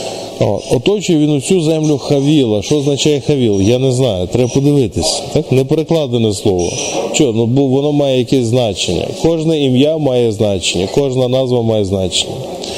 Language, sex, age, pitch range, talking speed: Ukrainian, male, 20-39, 115-145 Hz, 135 wpm